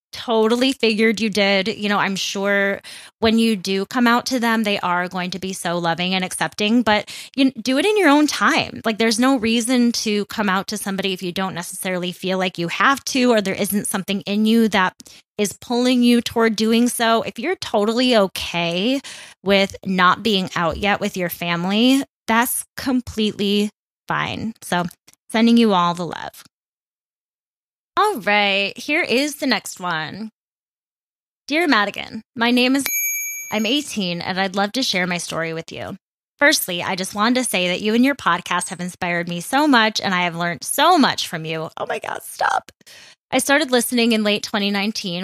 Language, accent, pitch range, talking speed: English, American, 195-255 Hz, 185 wpm